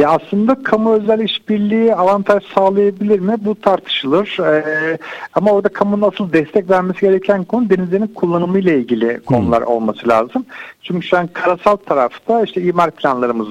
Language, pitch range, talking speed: Turkish, 125-185 Hz, 150 wpm